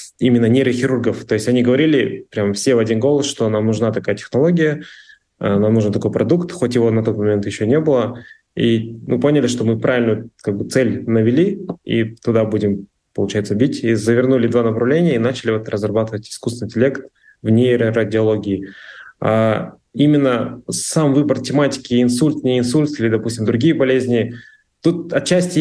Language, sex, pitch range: Russian, male, 115-135 Hz